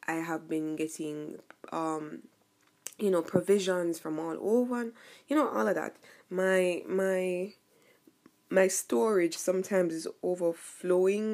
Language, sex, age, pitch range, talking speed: English, female, 20-39, 165-195 Hz, 120 wpm